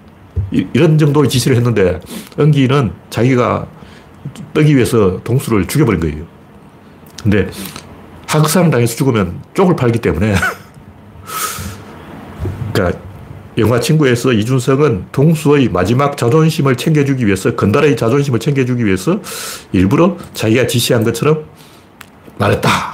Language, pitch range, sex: Korean, 105-135 Hz, male